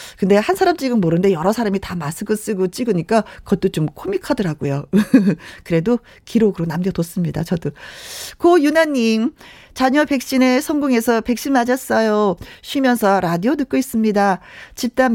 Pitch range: 185-275 Hz